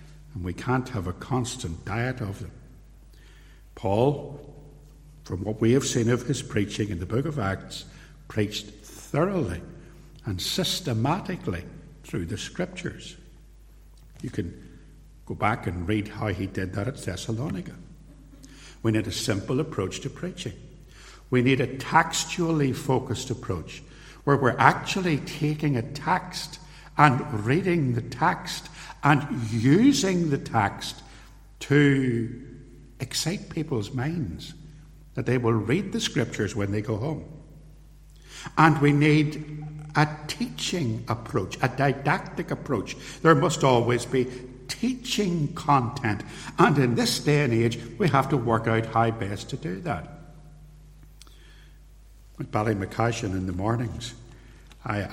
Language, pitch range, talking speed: English, 115-150 Hz, 130 wpm